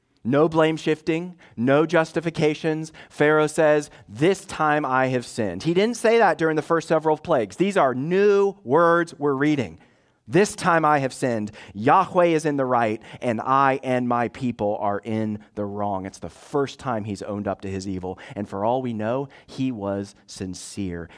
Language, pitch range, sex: English, 95-135 Hz, male